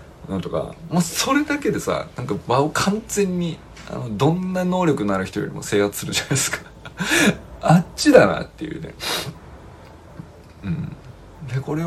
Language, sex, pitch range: Japanese, male, 100-165 Hz